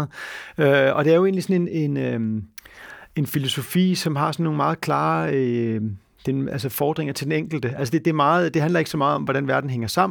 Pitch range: 130-155 Hz